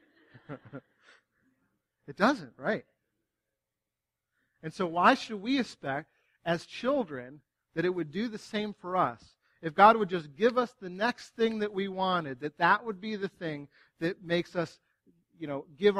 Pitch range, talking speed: 145-210 Hz, 160 wpm